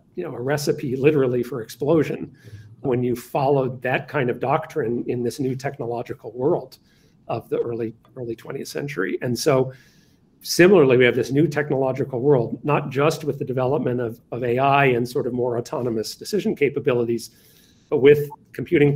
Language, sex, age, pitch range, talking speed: English, male, 40-59, 120-145 Hz, 165 wpm